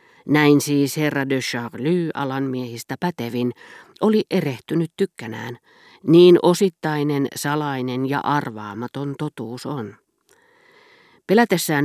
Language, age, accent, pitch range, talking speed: Finnish, 40-59, native, 125-180 Hz, 95 wpm